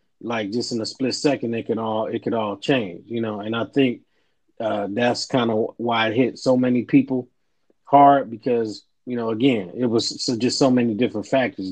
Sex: male